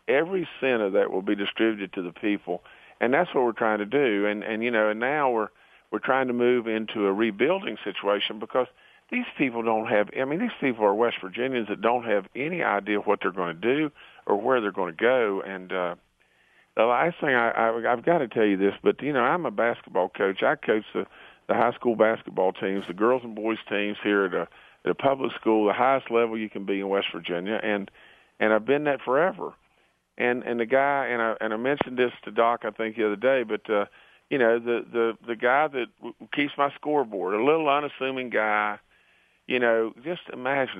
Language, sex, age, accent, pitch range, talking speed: English, male, 50-69, American, 105-130 Hz, 225 wpm